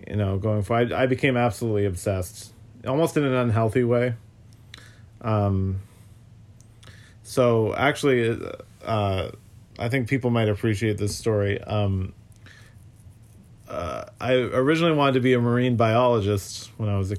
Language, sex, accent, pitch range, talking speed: English, male, American, 105-120 Hz, 135 wpm